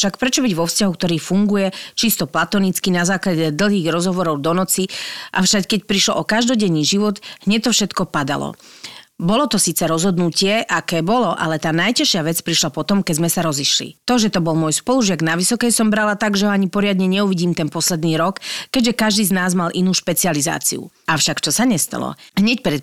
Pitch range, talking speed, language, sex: 170-225 Hz, 195 wpm, Slovak, female